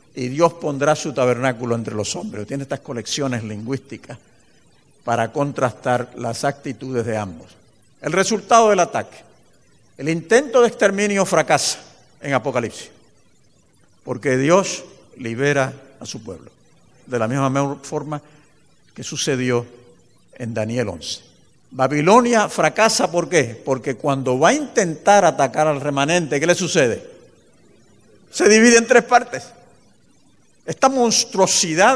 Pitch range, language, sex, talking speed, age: 130-180 Hz, English, male, 125 wpm, 50-69